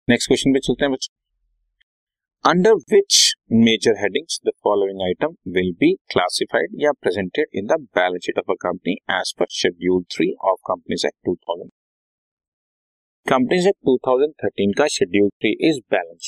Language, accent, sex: Hindi, native, male